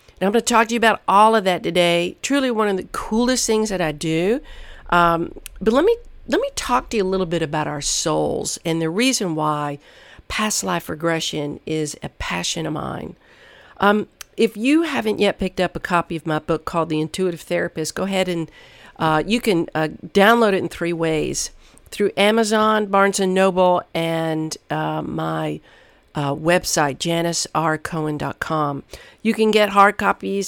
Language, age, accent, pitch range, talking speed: English, 50-69, American, 160-210 Hz, 180 wpm